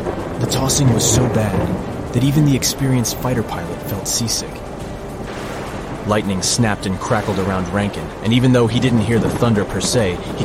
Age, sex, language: 30-49, male, English